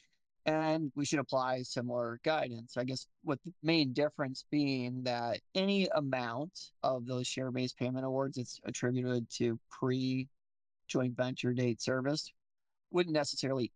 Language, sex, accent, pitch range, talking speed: English, male, American, 120-140 Hz, 130 wpm